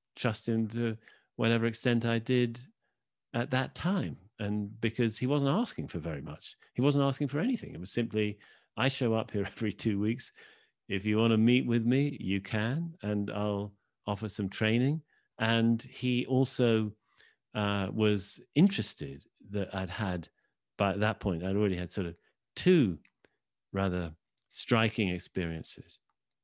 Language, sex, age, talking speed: English, male, 40-59, 155 wpm